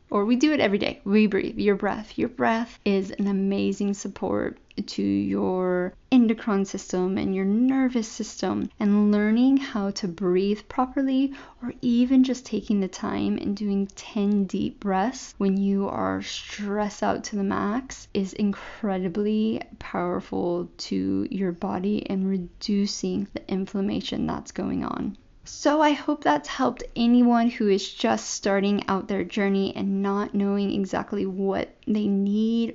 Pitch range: 190-220 Hz